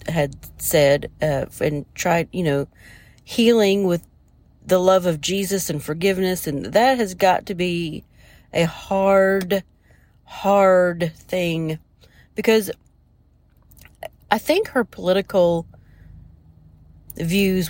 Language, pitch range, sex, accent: English, 155-200 Hz, female, American